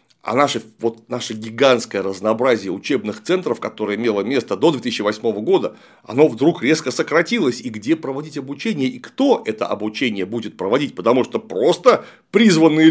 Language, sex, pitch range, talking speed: Russian, male, 135-225 Hz, 150 wpm